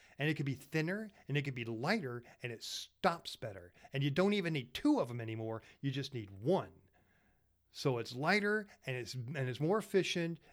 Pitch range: 120-175 Hz